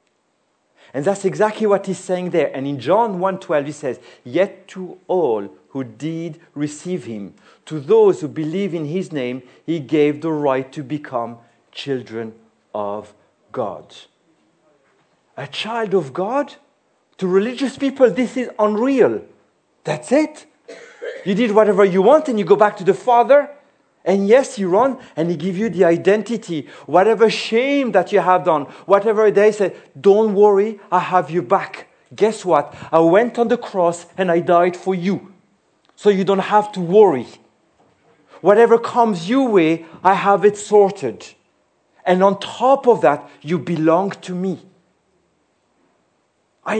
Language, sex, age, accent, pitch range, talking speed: French, male, 50-69, French, 160-215 Hz, 155 wpm